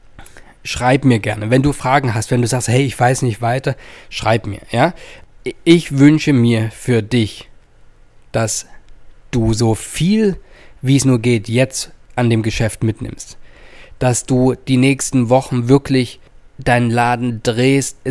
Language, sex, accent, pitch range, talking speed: German, male, German, 115-135 Hz, 150 wpm